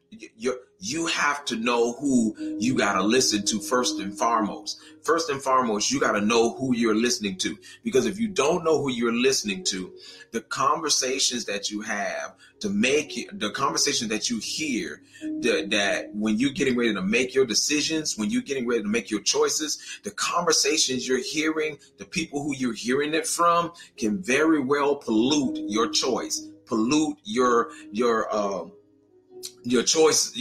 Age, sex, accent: 30-49, male, American